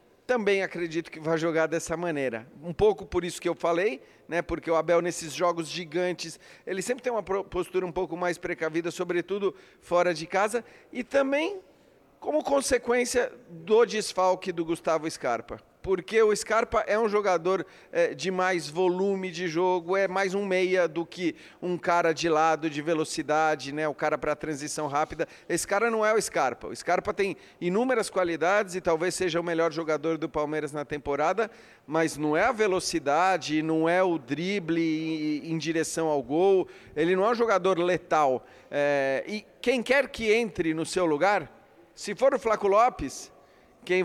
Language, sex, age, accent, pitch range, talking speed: Portuguese, male, 40-59, Brazilian, 165-210 Hz, 175 wpm